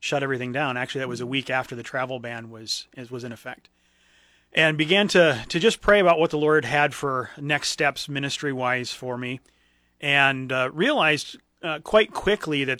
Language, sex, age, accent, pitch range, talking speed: English, male, 30-49, American, 125-150 Hz, 190 wpm